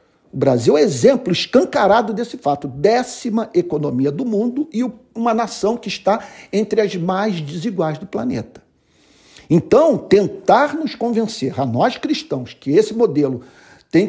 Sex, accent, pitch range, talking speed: male, Brazilian, 175-260 Hz, 140 wpm